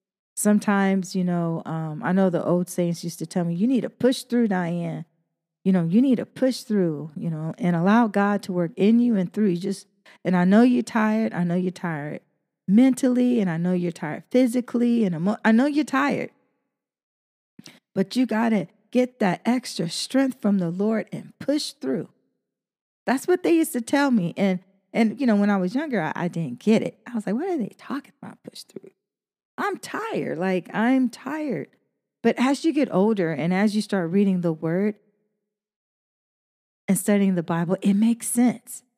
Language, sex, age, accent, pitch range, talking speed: English, female, 40-59, American, 190-240 Hz, 200 wpm